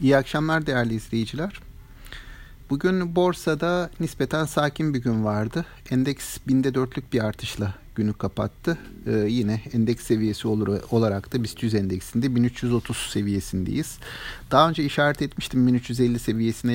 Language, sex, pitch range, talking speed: Turkish, male, 105-135 Hz, 125 wpm